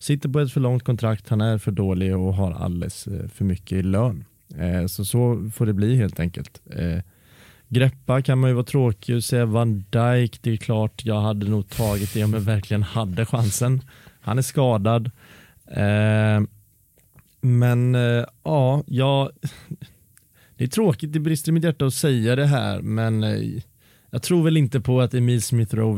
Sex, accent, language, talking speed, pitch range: male, Norwegian, Swedish, 170 wpm, 100-125 Hz